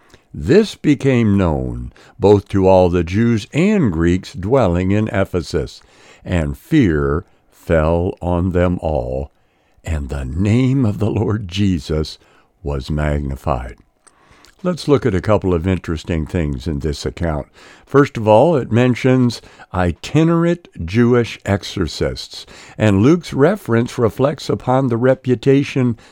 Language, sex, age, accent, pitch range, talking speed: English, male, 60-79, American, 85-125 Hz, 125 wpm